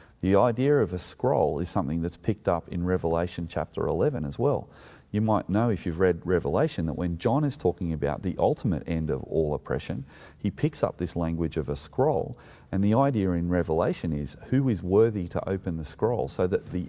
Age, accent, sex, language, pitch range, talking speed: 30-49, Australian, male, English, 80-95 Hz, 210 wpm